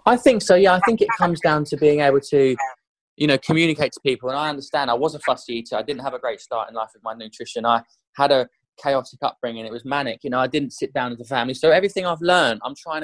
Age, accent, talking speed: 20-39, British, 275 wpm